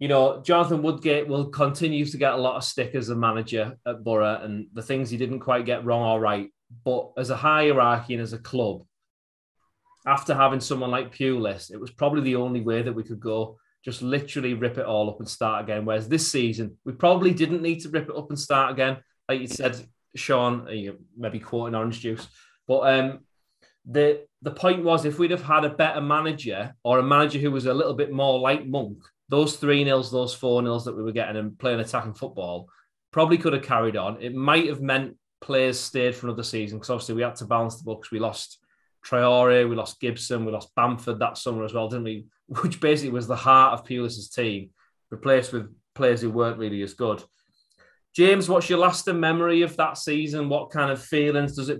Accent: British